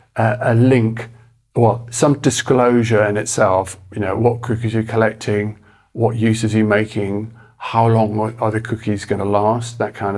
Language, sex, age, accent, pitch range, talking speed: English, male, 40-59, British, 105-115 Hz, 165 wpm